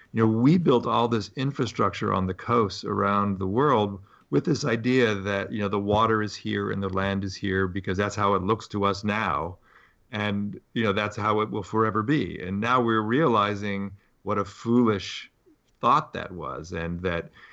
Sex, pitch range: male, 95-115 Hz